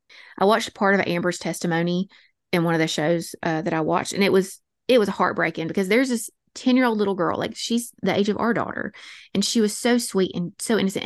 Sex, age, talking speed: female, 20-39, 240 wpm